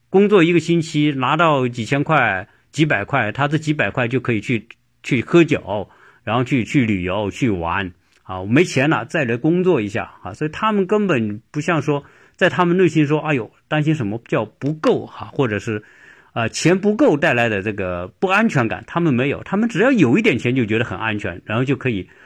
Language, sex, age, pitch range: Chinese, male, 50-69, 100-150 Hz